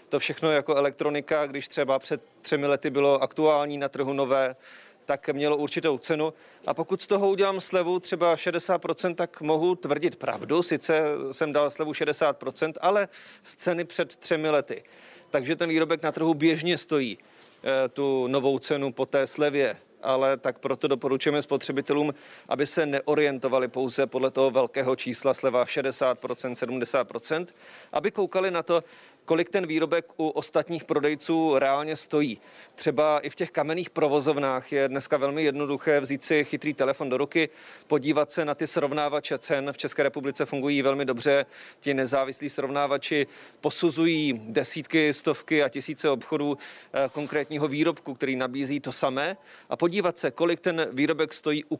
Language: Czech